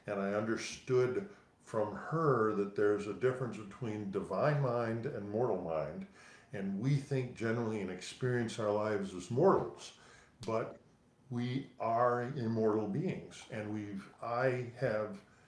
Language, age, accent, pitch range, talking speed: English, 50-69, American, 105-125 Hz, 130 wpm